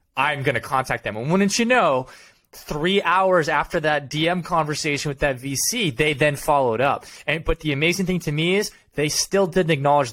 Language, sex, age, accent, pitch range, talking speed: English, male, 20-39, American, 125-165 Hz, 195 wpm